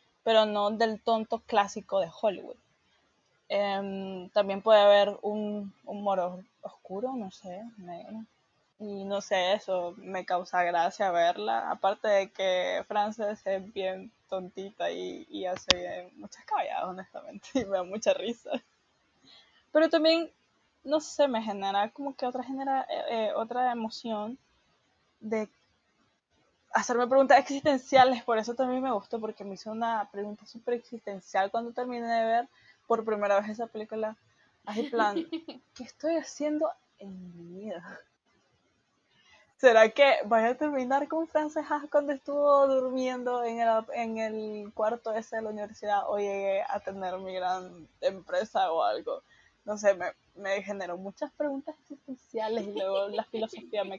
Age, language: 10-29, Spanish